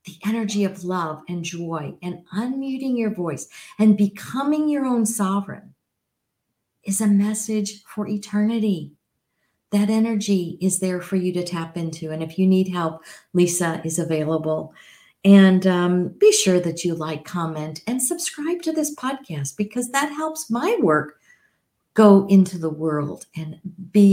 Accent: American